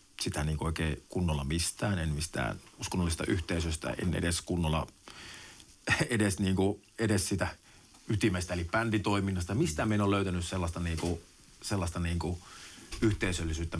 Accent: native